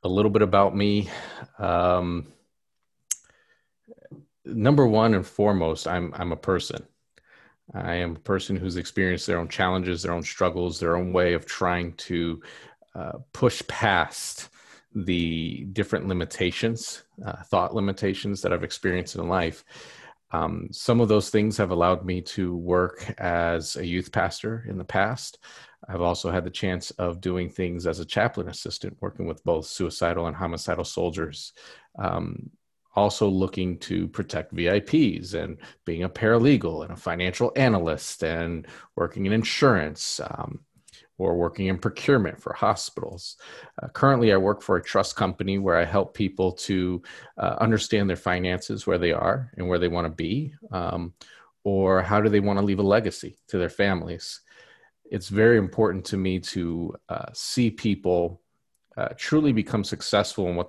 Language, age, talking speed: English, 40-59, 160 wpm